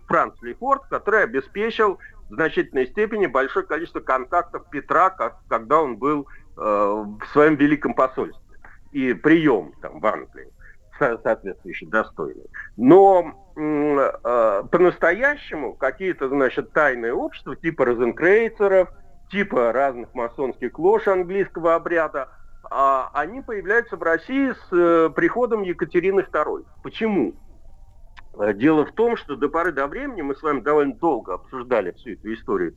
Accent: native